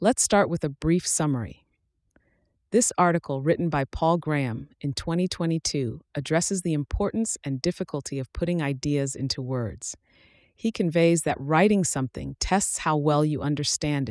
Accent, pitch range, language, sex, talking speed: American, 135-165 Hz, English, female, 145 wpm